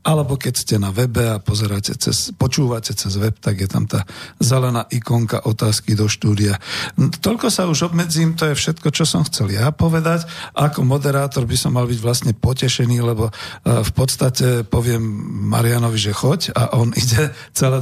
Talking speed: 165 wpm